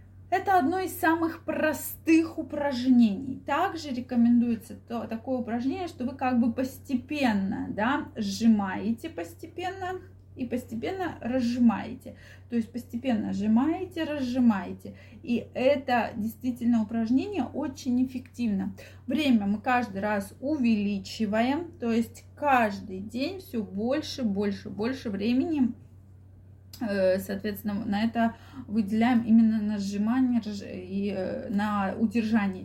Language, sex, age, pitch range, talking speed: Russian, female, 20-39, 210-265 Hz, 100 wpm